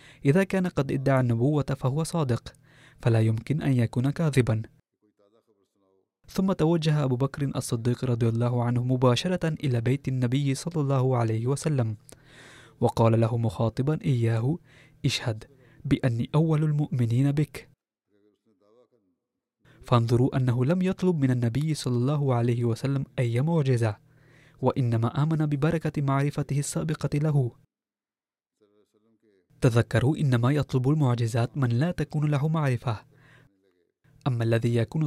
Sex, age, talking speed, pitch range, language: male, 20-39, 115 wpm, 120-145 Hz, Arabic